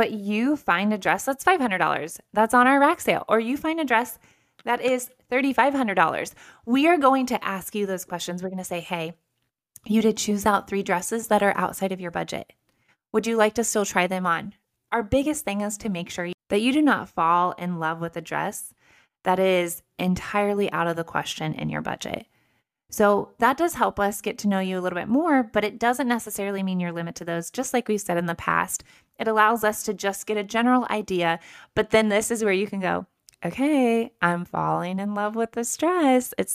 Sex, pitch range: female, 180-230 Hz